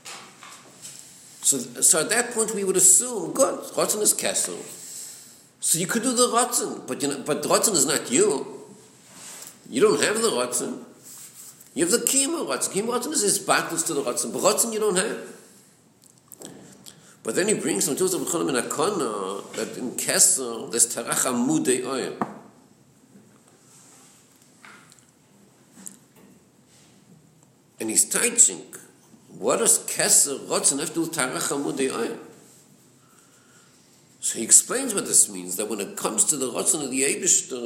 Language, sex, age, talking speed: English, male, 60-79, 145 wpm